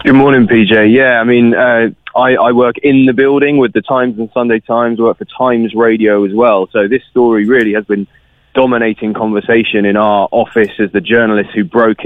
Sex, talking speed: male, 205 wpm